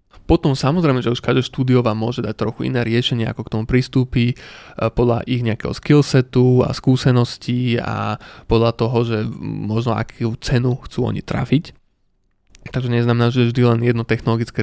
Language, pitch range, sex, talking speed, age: Slovak, 110-130 Hz, male, 155 wpm, 20-39